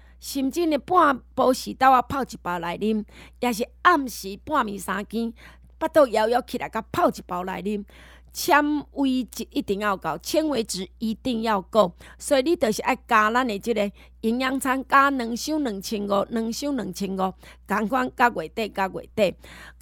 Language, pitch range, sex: Chinese, 195-275 Hz, female